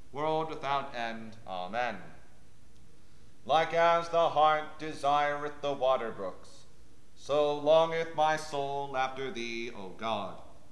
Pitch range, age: 120-155 Hz, 40-59